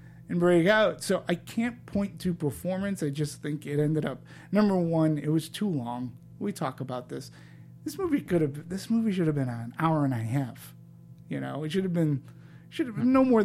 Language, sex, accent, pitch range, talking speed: English, male, American, 135-200 Hz, 225 wpm